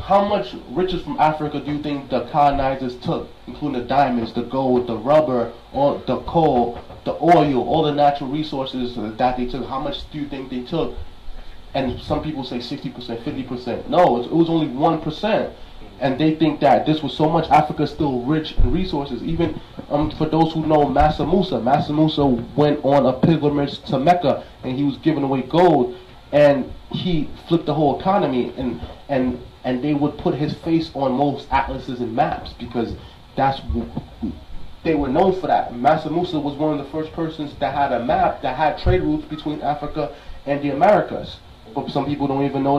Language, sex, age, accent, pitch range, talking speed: English, male, 30-49, American, 125-155 Hz, 190 wpm